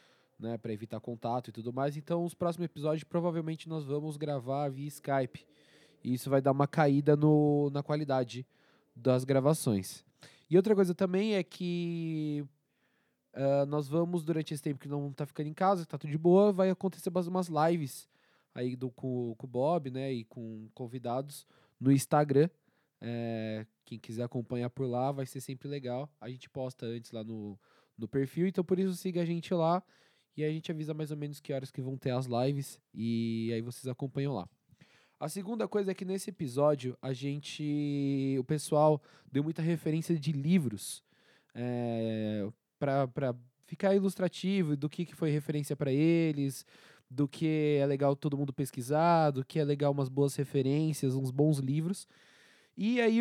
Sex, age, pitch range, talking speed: male, 20-39, 130-165 Hz, 175 wpm